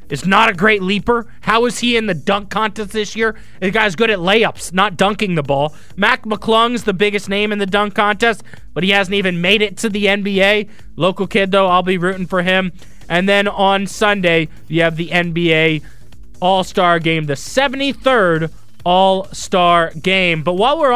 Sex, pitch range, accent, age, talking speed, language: male, 175-225 Hz, American, 20-39, 190 wpm, English